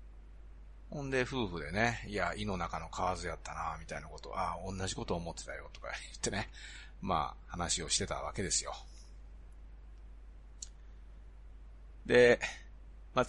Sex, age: male, 40-59